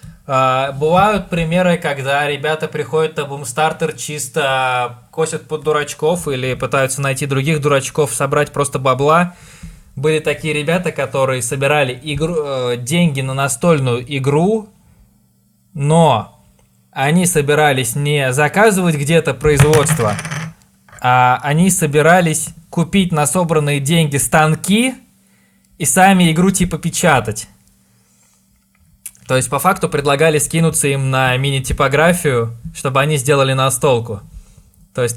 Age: 20-39